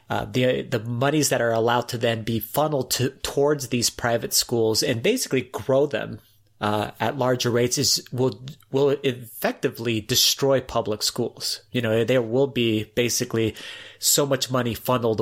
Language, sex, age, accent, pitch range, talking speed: English, male, 30-49, American, 115-140 Hz, 160 wpm